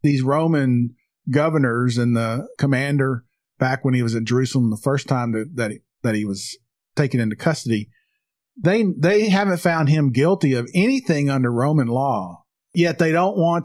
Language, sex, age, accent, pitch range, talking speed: English, male, 50-69, American, 125-165 Hz, 165 wpm